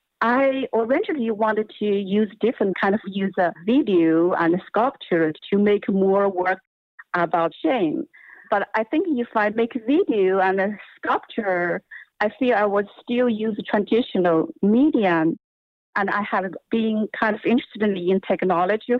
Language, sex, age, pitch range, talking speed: English, female, 50-69, 190-250 Hz, 140 wpm